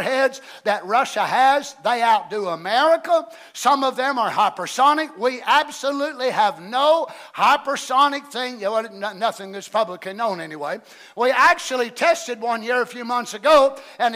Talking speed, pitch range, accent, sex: 140 wpm, 235-300 Hz, American, male